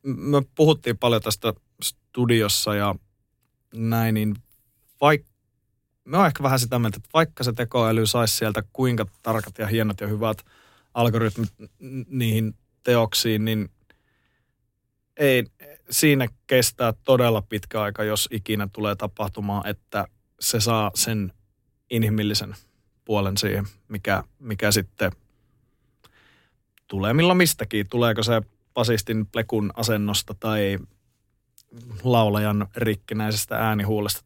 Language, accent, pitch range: Finnish, native, 105-120 Hz